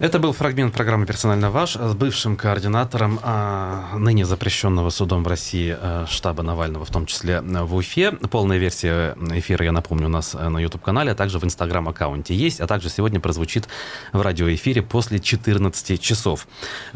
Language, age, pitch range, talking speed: Russian, 30-49, 85-110 Hz, 155 wpm